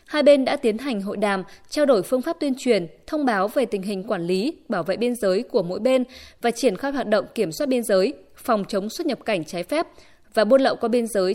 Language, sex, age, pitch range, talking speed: Vietnamese, female, 20-39, 205-275 Hz, 260 wpm